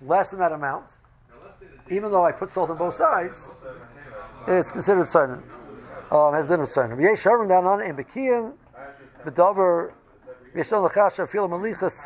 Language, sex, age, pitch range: English, male, 50-69, 155-205 Hz